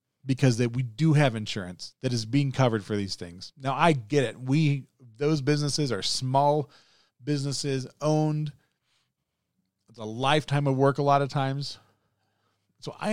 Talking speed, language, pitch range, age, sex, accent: 160 wpm, English, 115-155 Hz, 40-59, male, American